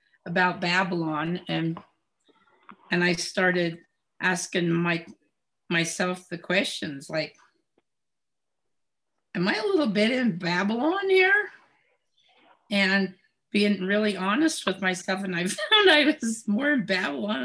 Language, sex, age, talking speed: English, female, 50-69, 115 wpm